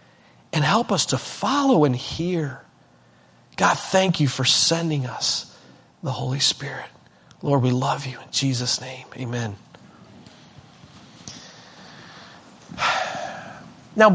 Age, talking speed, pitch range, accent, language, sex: 40-59, 105 wpm, 150-190 Hz, American, English, male